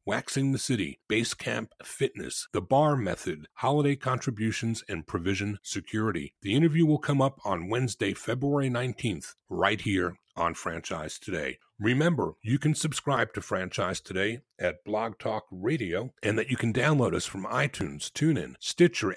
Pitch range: 100-145 Hz